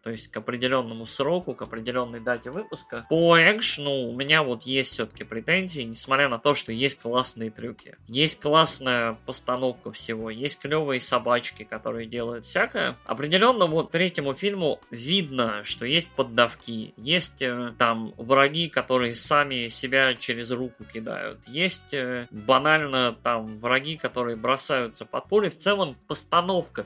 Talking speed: 140 wpm